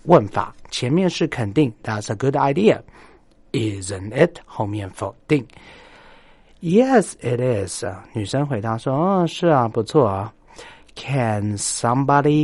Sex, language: male, Chinese